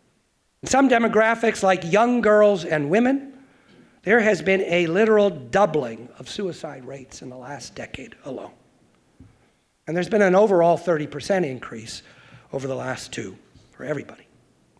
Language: English